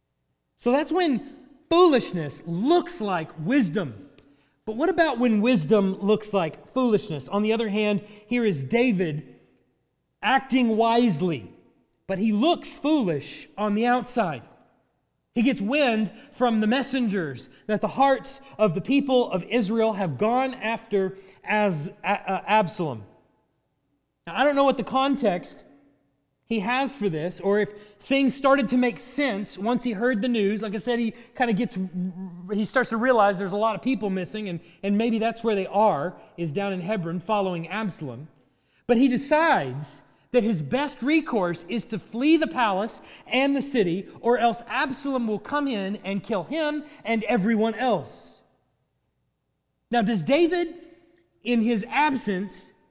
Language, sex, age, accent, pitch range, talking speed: English, male, 30-49, American, 190-255 Hz, 155 wpm